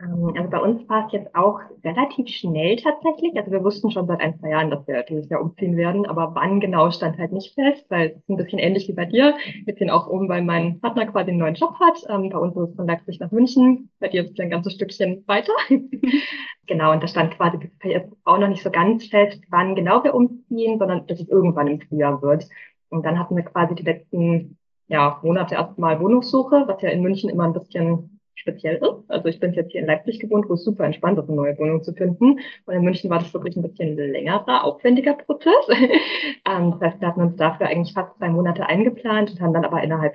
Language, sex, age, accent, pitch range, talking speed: German, female, 20-39, German, 165-220 Hz, 235 wpm